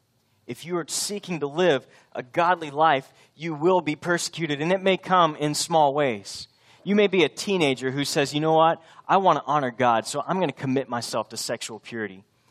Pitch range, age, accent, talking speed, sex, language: 120-160 Hz, 30-49, American, 210 wpm, male, English